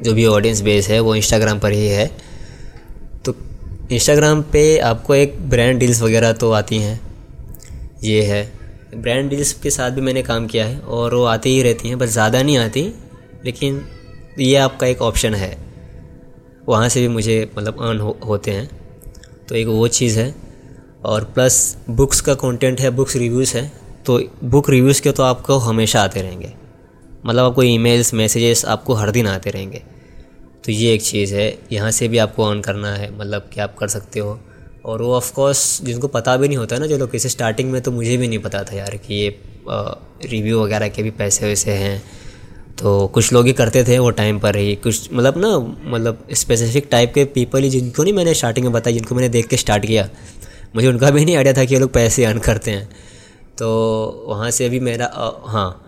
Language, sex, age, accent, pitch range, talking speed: Hindi, male, 20-39, native, 105-130 Hz, 200 wpm